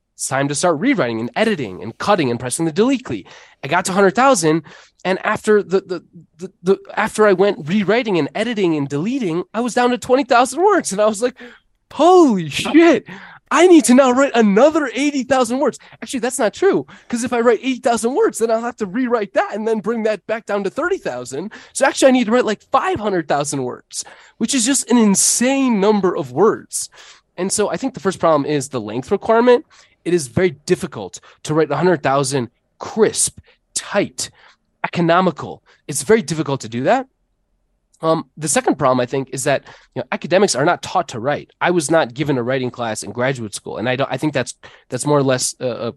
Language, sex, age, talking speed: English, male, 20-39, 205 wpm